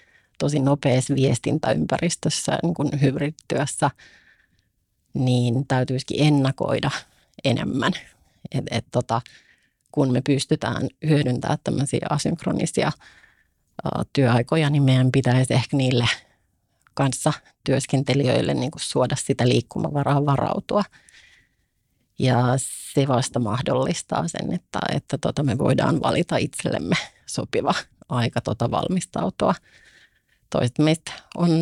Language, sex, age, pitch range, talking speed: Finnish, female, 30-49, 130-155 Hz, 100 wpm